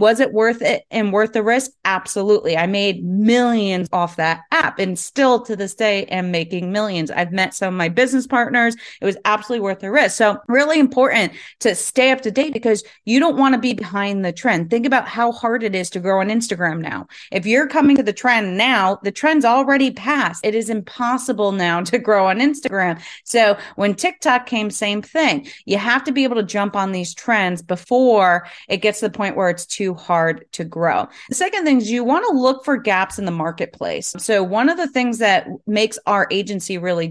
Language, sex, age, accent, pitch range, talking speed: English, female, 30-49, American, 185-245 Hz, 215 wpm